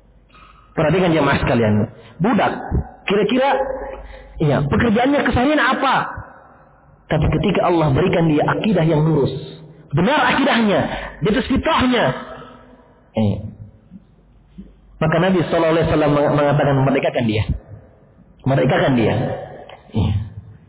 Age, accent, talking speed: 40-59, native, 95 wpm